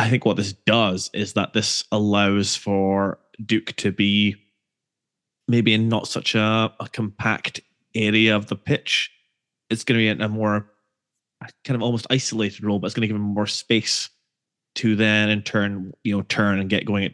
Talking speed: 195 wpm